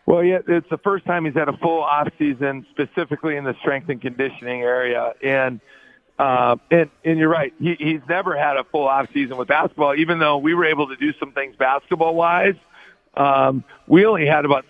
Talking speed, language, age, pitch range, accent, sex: 200 wpm, English, 50-69, 135-165 Hz, American, male